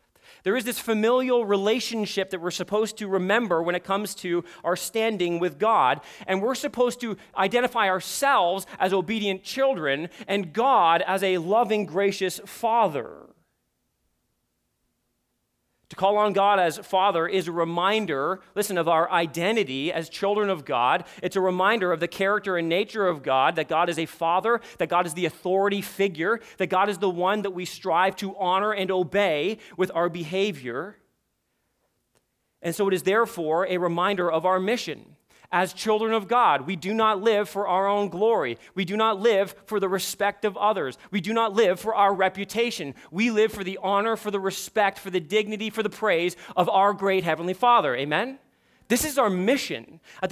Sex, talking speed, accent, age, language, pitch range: male, 180 wpm, American, 30-49, English, 185-220 Hz